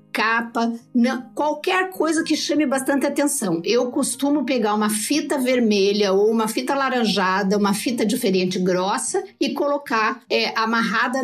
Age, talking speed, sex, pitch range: 50-69, 130 wpm, female, 215-285 Hz